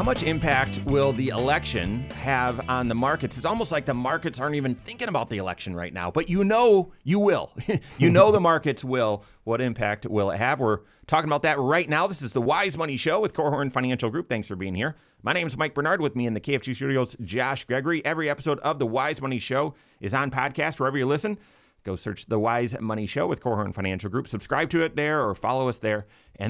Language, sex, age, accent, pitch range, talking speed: English, male, 30-49, American, 105-150 Hz, 235 wpm